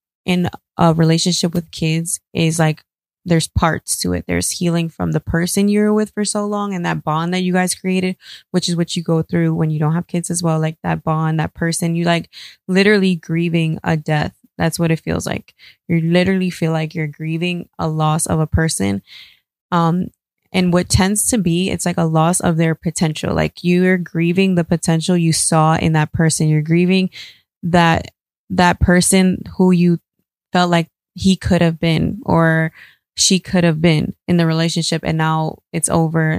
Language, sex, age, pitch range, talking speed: English, female, 20-39, 160-180 Hz, 190 wpm